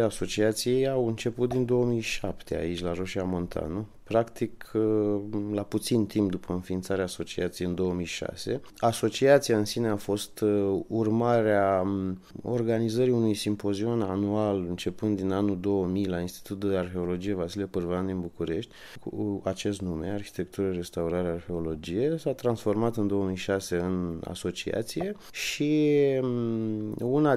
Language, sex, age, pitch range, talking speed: Romanian, male, 20-39, 95-120 Hz, 120 wpm